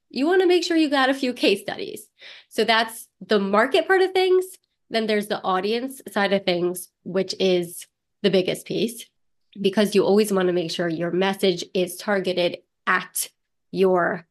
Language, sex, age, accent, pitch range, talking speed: English, female, 30-49, American, 190-250 Hz, 180 wpm